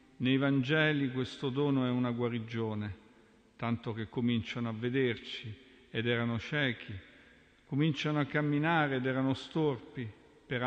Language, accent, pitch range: Italian, native, 115-135 Hz